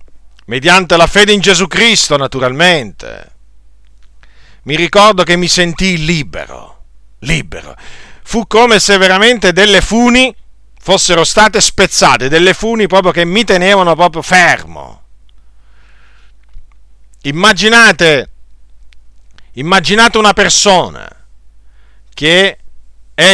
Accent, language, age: native, Italian, 50-69